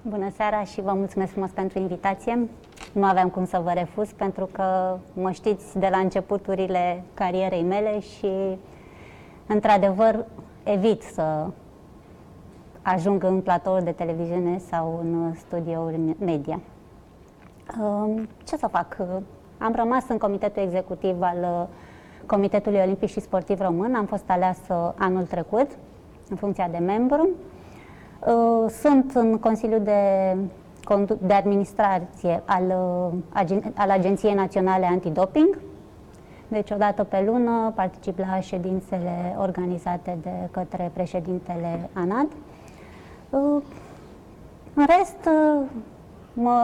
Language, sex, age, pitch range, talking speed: Romanian, female, 20-39, 185-220 Hz, 110 wpm